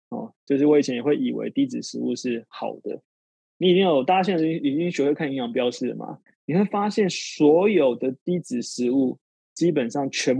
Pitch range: 125-165 Hz